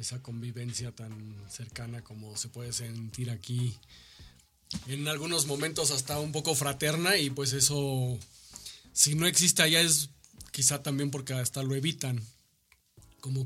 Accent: Mexican